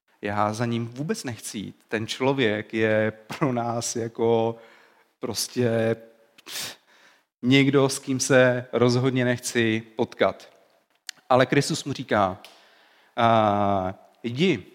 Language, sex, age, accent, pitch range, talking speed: Czech, male, 40-59, native, 115-140 Hz, 100 wpm